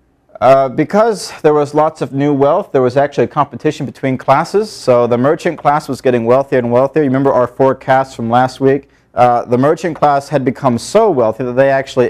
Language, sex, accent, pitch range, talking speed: English, male, American, 115-140 Hz, 210 wpm